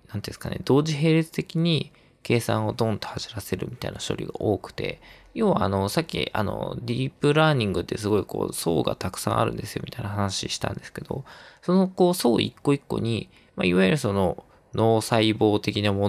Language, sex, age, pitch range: Japanese, male, 20-39, 105-160 Hz